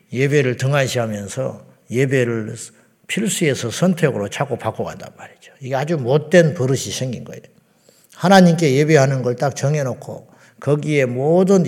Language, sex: Korean, male